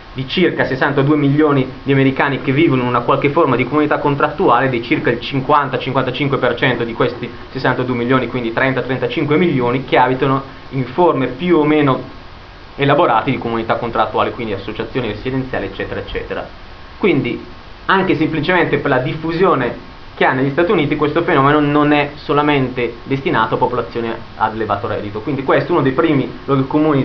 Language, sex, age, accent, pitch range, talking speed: Italian, male, 30-49, native, 115-145 Hz, 160 wpm